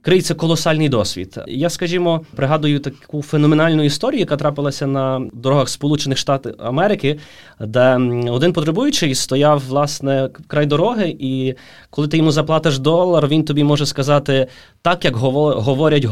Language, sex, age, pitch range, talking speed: Ukrainian, male, 20-39, 130-175 Hz, 135 wpm